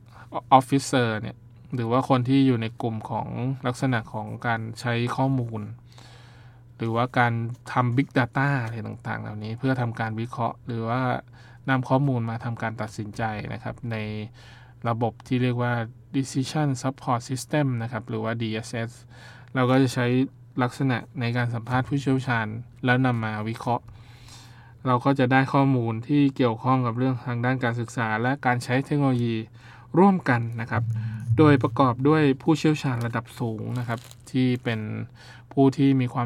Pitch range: 115-130 Hz